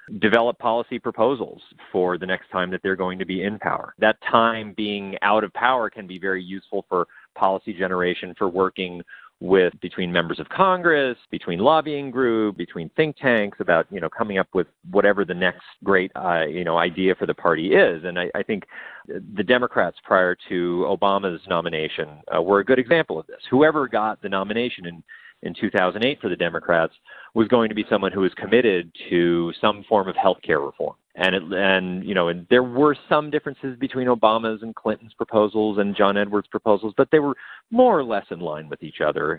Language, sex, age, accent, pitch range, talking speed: English, male, 40-59, American, 90-115 Hz, 195 wpm